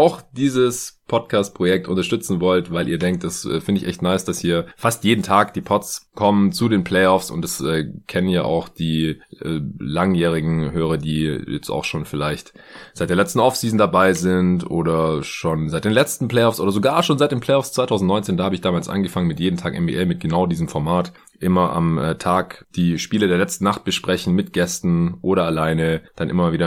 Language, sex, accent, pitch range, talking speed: German, male, German, 80-105 Hz, 200 wpm